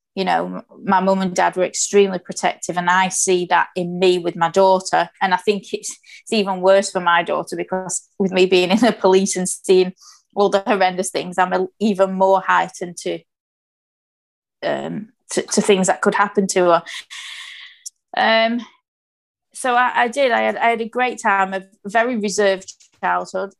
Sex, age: female, 20-39